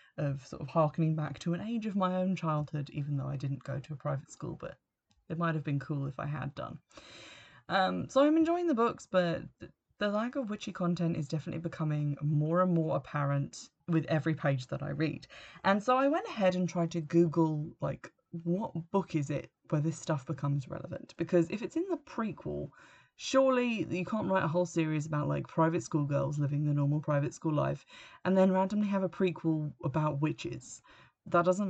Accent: British